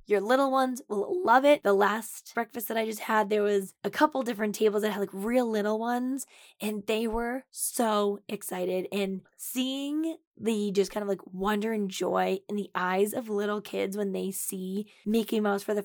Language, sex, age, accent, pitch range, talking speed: English, female, 10-29, American, 195-235 Hz, 200 wpm